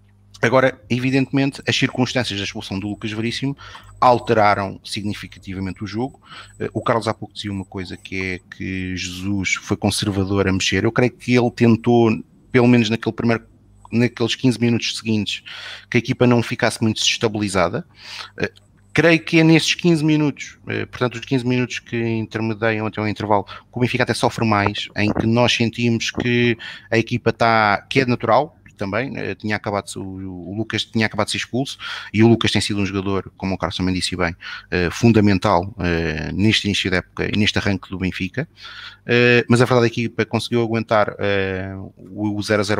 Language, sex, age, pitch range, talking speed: Portuguese, male, 30-49, 100-115 Hz, 180 wpm